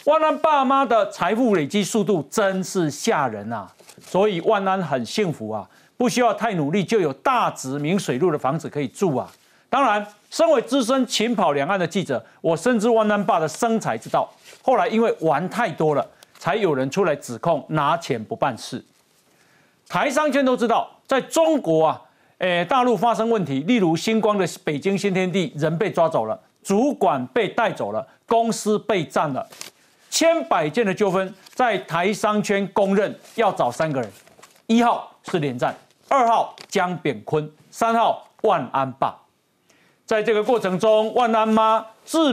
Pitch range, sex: 165-230 Hz, male